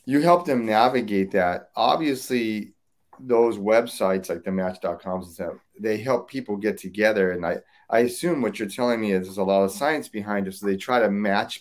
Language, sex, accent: English, male, American